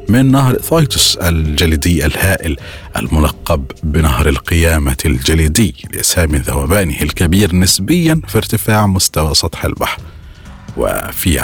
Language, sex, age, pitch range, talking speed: Arabic, male, 40-59, 75-105 Hz, 100 wpm